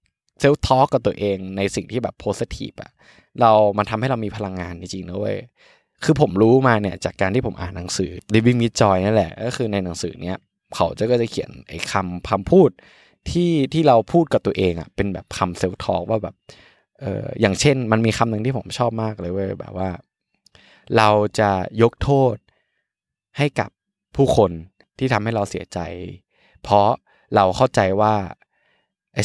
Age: 20-39